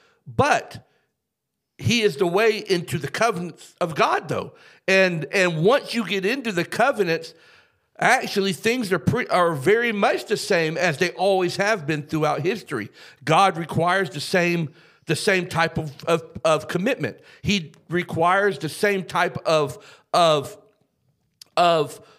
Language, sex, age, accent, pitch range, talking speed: English, male, 50-69, American, 155-200 Hz, 145 wpm